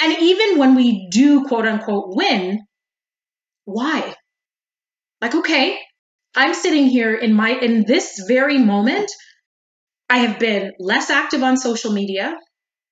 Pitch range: 215-275 Hz